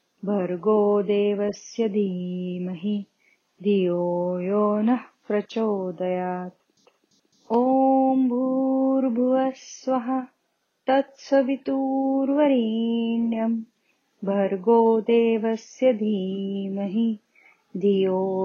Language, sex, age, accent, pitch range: Marathi, female, 30-49, native, 205-265 Hz